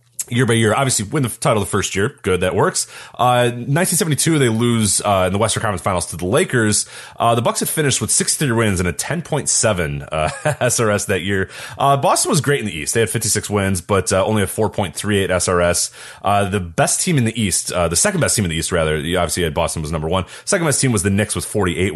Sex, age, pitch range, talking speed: male, 30-49, 90-120 Hz, 245 wpm